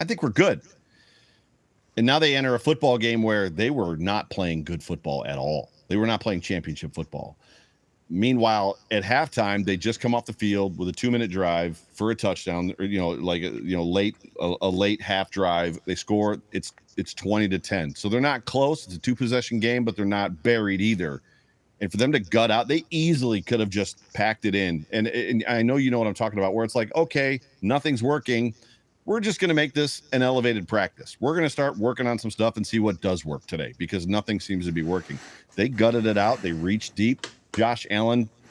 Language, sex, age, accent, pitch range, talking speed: English, male, 40-59, American, 100-120 Hz, 225 wpm